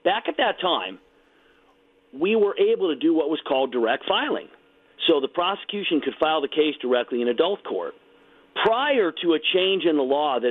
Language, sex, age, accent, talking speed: English, male, 40-59, American, 190 wpm